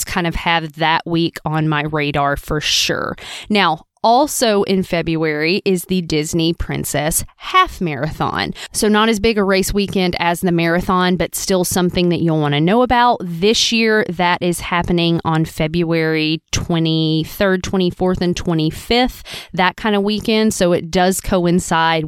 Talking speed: 160 wpm